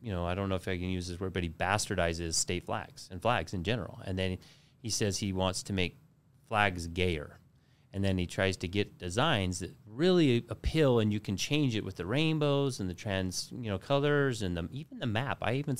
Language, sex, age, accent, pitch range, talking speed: English, male, 30-49, American, 95-135 Hz, 230 wpm